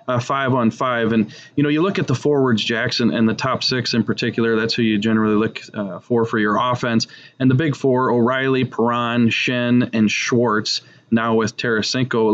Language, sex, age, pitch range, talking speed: English, male, 20-39, 115-145 Hz, 200 wpm